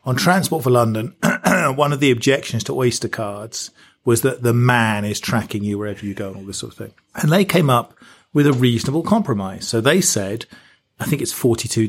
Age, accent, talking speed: 40-59, British, 210 wpm